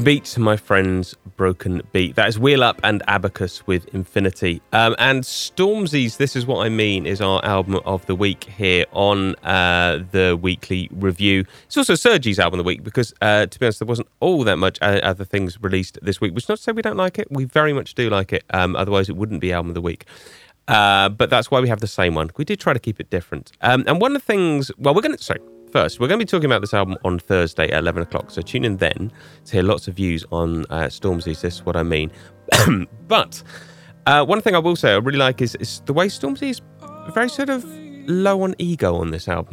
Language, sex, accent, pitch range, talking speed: English, male, British, 95-145 Hz, 245 wpm